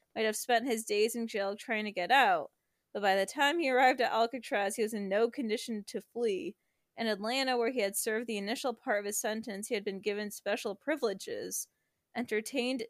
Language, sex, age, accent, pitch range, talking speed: English, female, 20-39, American, 210-245 Hz, 210 wpm